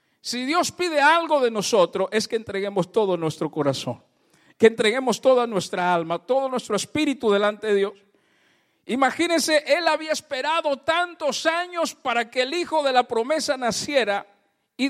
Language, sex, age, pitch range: Spanish, male, 50-69, 205-275 Hz